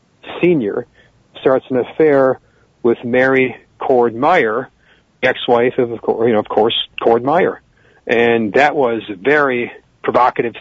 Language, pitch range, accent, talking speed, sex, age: English, 120-145 Hz, American, 115 wpm, male, 40-59